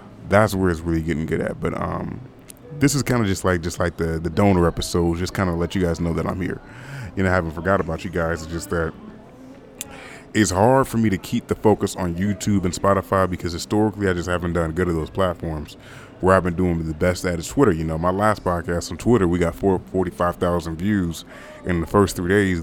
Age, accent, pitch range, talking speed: 30-49, American, 90-115 Hz, 245 wpm